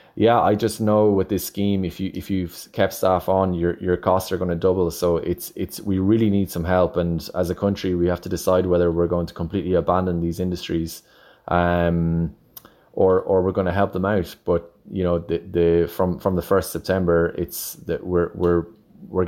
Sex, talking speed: male, 210 wpm